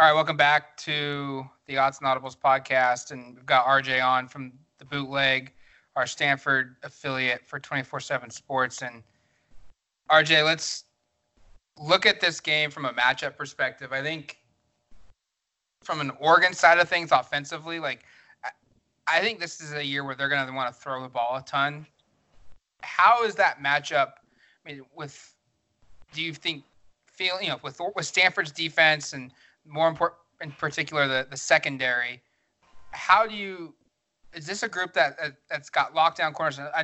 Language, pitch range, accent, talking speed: English, 135-160 Hz, American, 165 wpm